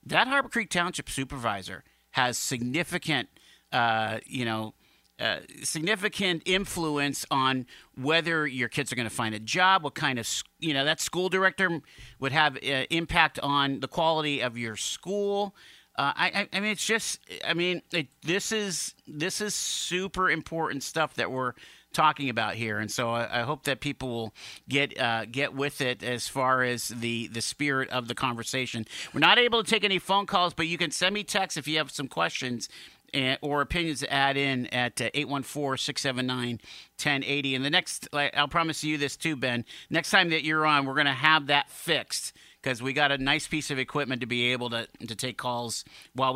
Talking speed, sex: 190 wpm, male